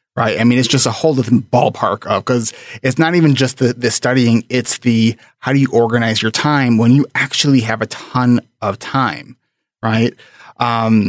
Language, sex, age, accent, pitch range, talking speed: English, male, 30-49, American, 115-140 Hz, 195 wpm